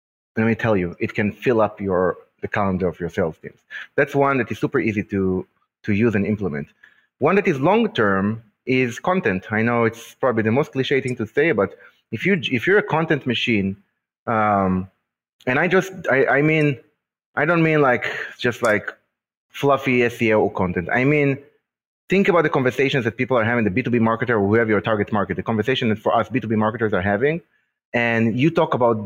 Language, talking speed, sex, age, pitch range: English, 210 wpm, male, 30-49, 110-140 Hz